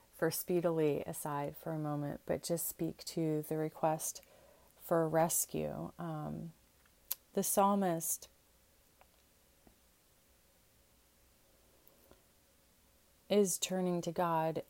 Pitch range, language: 150-180 Hz, English